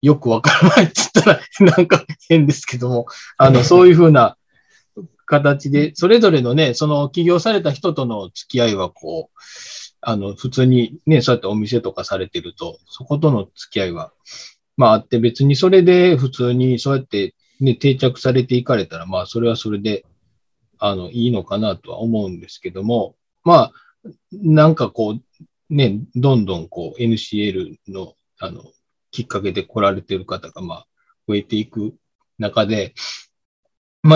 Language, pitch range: Japanese, 105-150 Hz